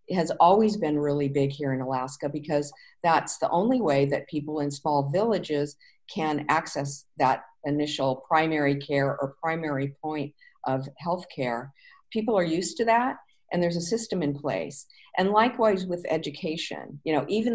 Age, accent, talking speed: 50-69, American, 165 wpm